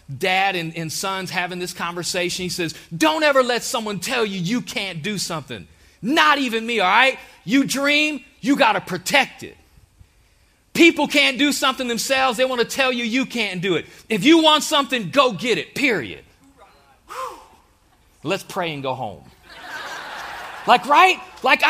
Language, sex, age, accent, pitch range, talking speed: English, male, 40-59, American, 205-280 Hz, 170 wpm